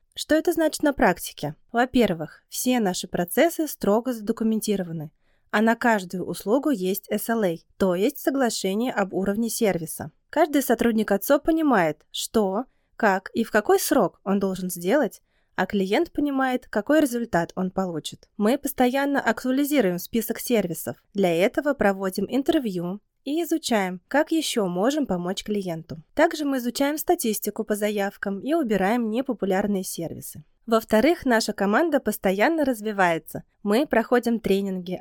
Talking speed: 130 wpm